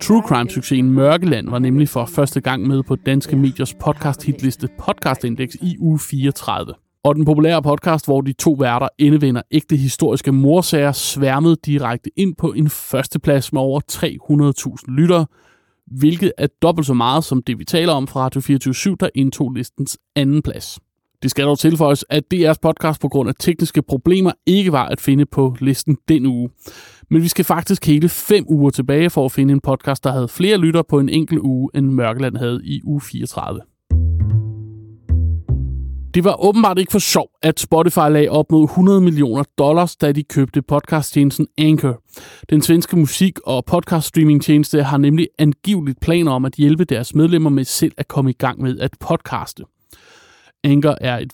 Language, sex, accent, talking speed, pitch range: Danish, male, native, 180 wpm, 135-160 Hz